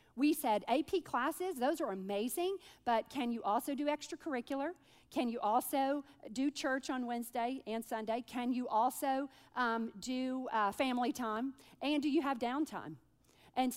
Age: 50-69